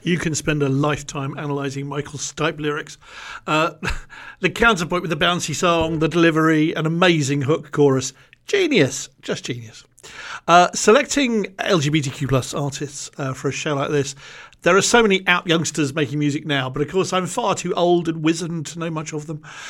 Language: English